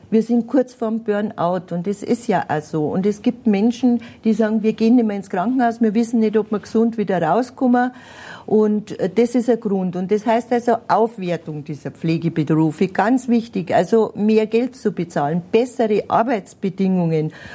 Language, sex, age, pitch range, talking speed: German, female, 50-69, 185-230 Hz, 175 wpm